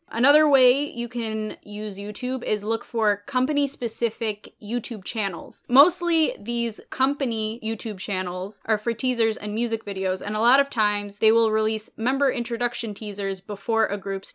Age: 10-29